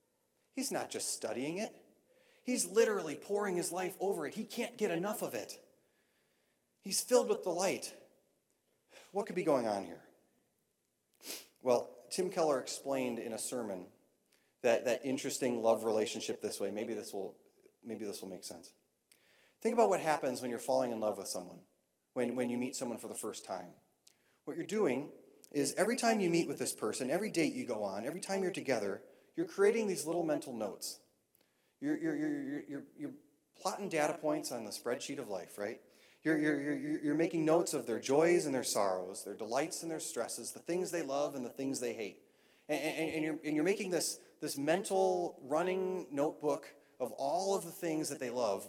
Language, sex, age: English, male, 30-49